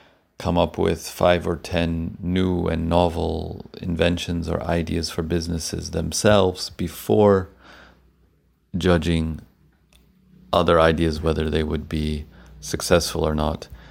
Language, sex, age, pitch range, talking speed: English, male, 40-59, 80-85 Hz, 110 wpm